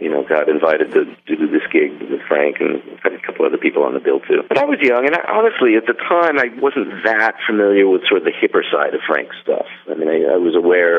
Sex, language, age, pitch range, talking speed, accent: male, English, 40-59, 350-440 Hz, 255 wpm, American